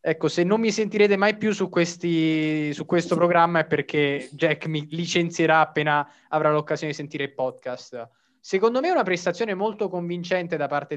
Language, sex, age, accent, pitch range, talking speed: Italian, male, 20-39, native, 155-215 Hz, 180 wpm